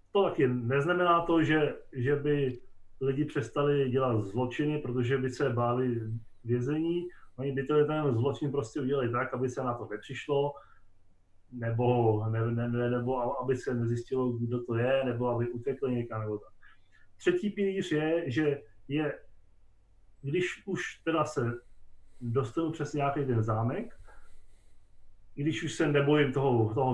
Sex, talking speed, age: male, 145 wpm, 30-49